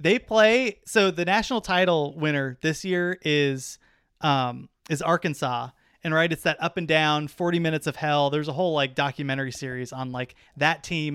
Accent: American